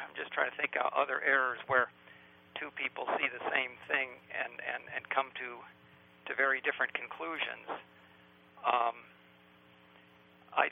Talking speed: 140 wpm